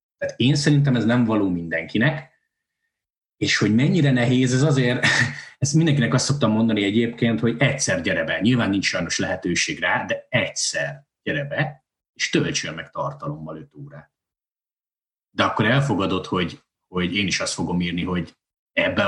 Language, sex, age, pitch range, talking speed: Hungarian, male, 30-49, 105-145 Hz, 155 wpm